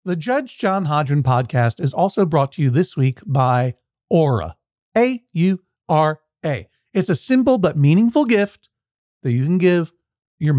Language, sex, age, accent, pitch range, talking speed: English, male, 50-69, American, 135-195 Hz, 145 wpm